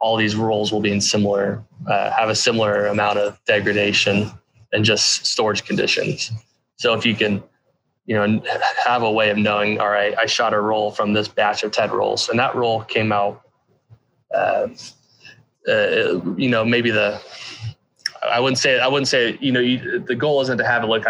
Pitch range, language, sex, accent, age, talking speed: 105-115 Hz, English, male, American, 20-39, 195 wpm